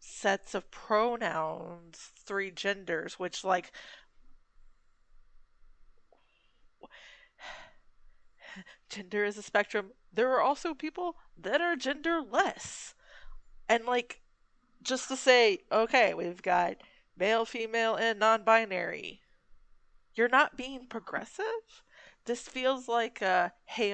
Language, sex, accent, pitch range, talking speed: English, female, American, 185-250 Hz, 100 wpm